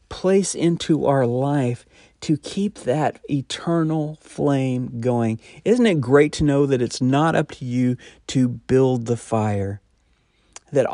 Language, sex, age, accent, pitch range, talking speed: English, male, 40-59, American, 110-145 Hz, 145 wpm